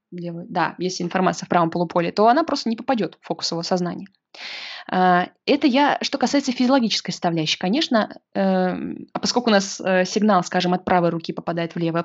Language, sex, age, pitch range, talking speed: Russian, female, 20-39, 180-245 Hz, 175 wpm